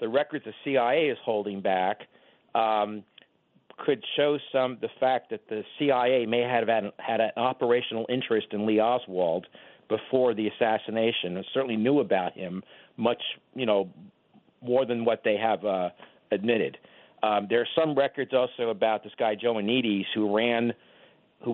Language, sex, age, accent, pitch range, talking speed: English, male, 50-69, American, 105-125 Hz, 160 wpm